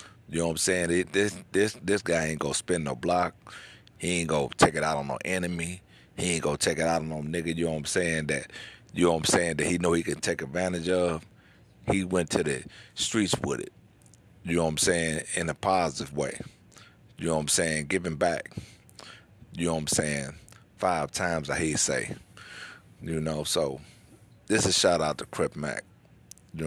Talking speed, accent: 220 wpm, American